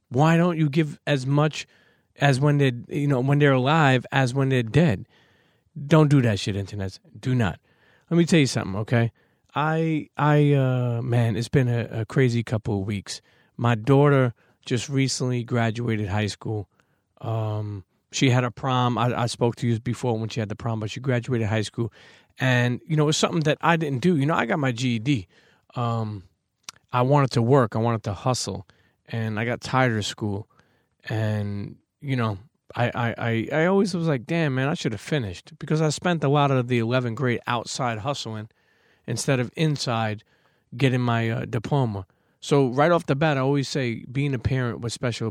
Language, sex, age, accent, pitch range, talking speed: English, male, 30-49, American, 115-145 Hz, 195 wpm